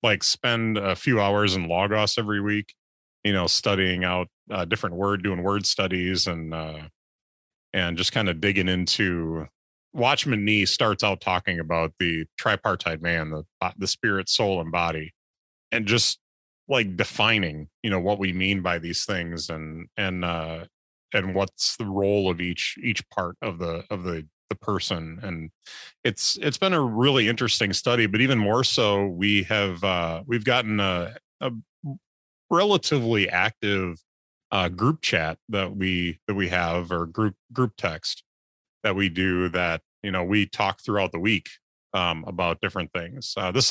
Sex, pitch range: male, 85-105 Hz